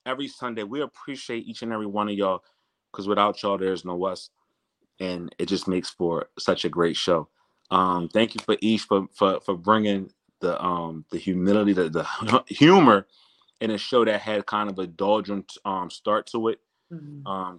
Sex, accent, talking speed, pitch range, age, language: male, American, 190 wpm, 90-110 Hz, 30-49, English